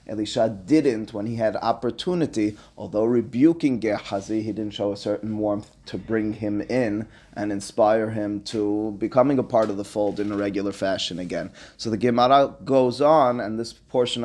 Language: English